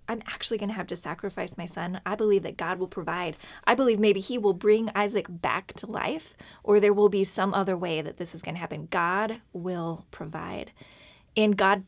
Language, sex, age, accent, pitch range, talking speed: English, female, 10-29, American, 195-220 Hz, 215 wpm